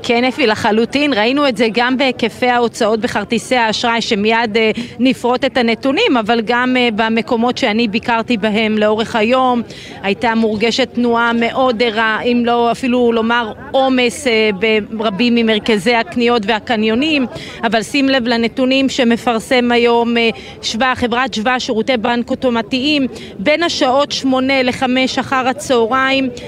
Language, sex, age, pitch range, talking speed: Hebrew, female, 30-49, 235-275 Hz, 125 wpm